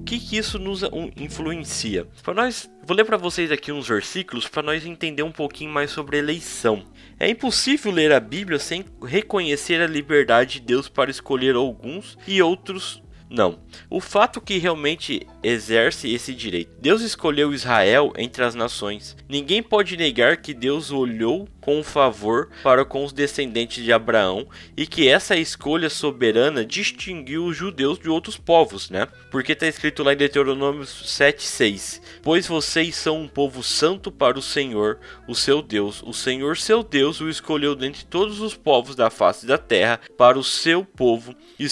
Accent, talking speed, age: Brazilian, 165 wpm, 10-29